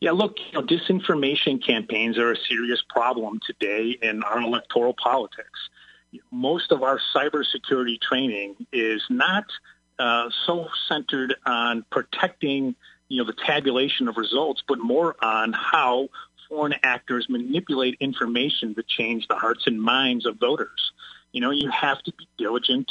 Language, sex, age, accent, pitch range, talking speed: English, male, 40-59, American, 120-155 Hz, 145 wpm